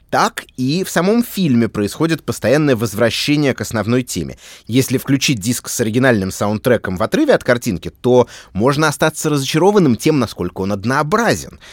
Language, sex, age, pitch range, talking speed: Russian, male, 30-49, 105-155 Hz, 150 wpm